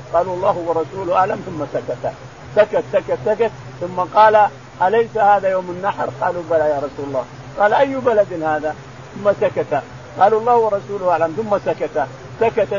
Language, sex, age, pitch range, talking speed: Arabic, male, 50-69, 155-215 Hz, 155 wpm